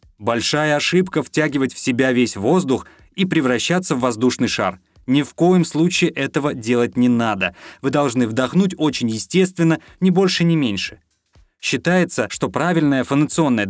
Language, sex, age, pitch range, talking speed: Russian, male, 20-39, 115-160 Hz, 145 wpm